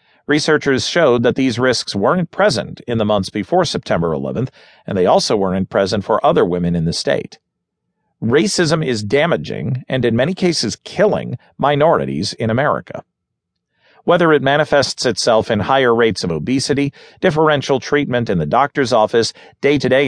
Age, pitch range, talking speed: 40-59, 110-150 Hz, 150 wpm